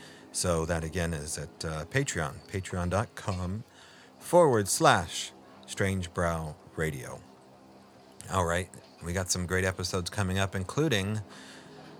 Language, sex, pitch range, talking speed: English, male, 80-100 Hz, 105 wpm